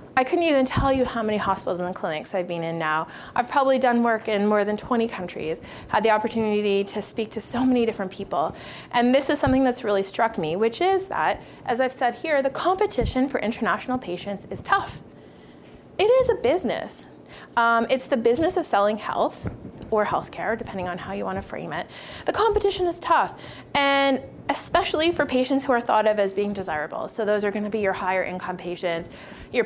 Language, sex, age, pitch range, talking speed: English, female, 30-49, 205-275 Hz, 210 wpm